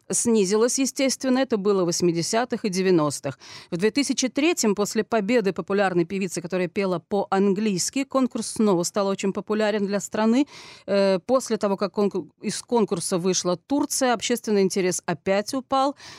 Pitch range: 185-235 Hz